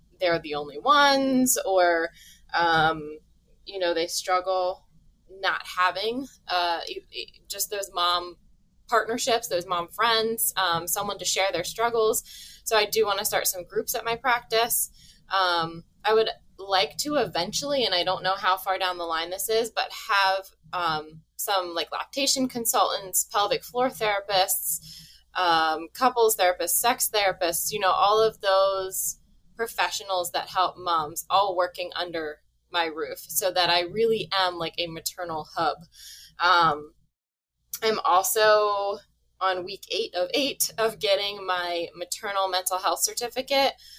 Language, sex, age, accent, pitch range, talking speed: English, female, 10-29, American, 170-220 Hz, 145 wpm